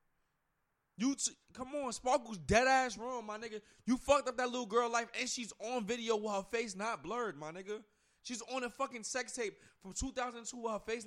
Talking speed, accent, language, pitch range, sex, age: 210 wpm, American, English, 190-245 Hz, male, 20-39